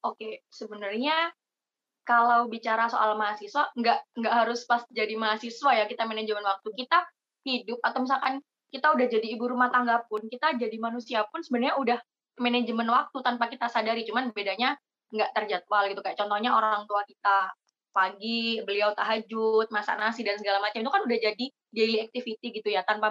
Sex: female